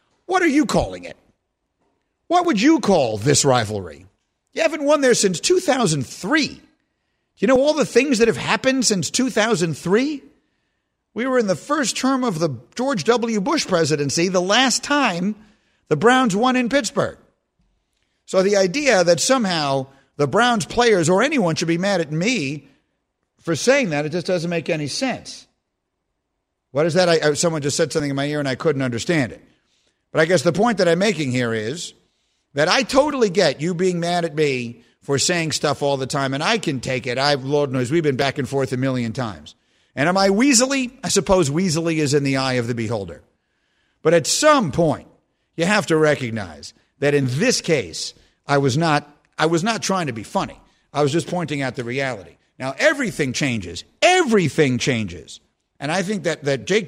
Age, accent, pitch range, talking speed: 50-69, American, 140-220 Hz, 190 wpm